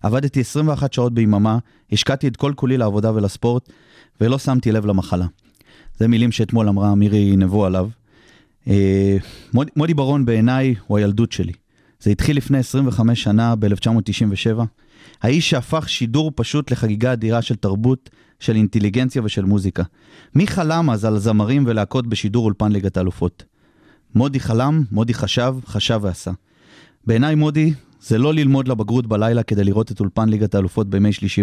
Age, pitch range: 30-49, 105-125 Hz